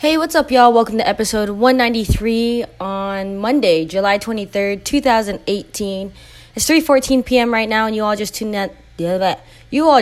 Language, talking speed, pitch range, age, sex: English, 160 wpm, 190-235 Hz, 20-39, female